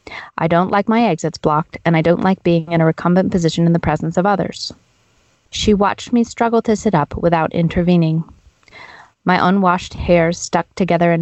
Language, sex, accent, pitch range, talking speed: English, female, American, 165-190 Hz, 185 wpm